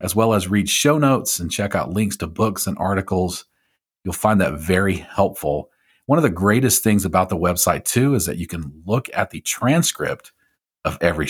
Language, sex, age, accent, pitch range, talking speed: English, male, 40-59, American, 90-110 Hz, 200 wpm